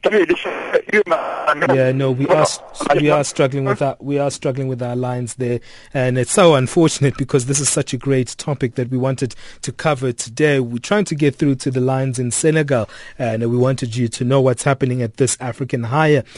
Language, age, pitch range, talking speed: English, 30-49, 130-155 Hz, 200 wpm